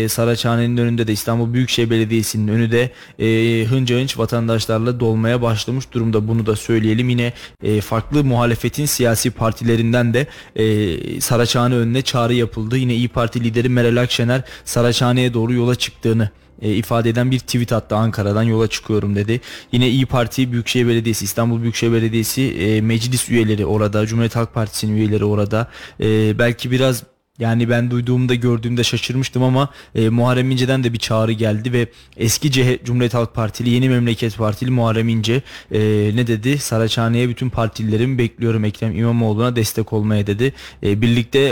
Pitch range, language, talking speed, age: 110-120 Hz, Turkish, 155 wpm, 20-39